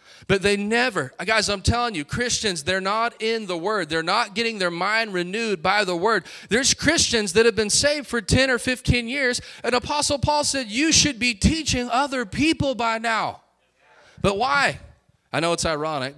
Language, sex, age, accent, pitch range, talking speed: English, male, 30-49, American, 165-235 Hz, 190 wpm